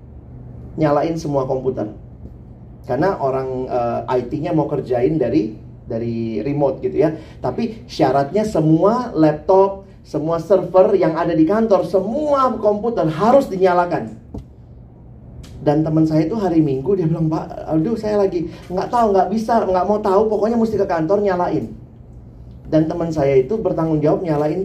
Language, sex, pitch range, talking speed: Indonesian, male, 135-200 Hz, 145 wpm